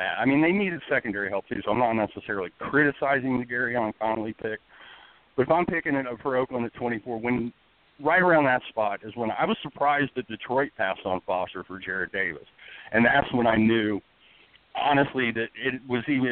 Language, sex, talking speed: English, male, 200 wpm